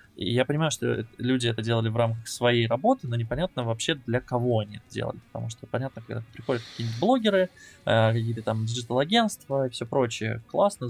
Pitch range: 115-130 Hz